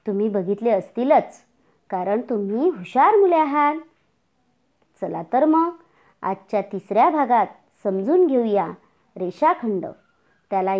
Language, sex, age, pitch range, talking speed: Marathi, male, 40-59, 195-275 Hz, 105 wpm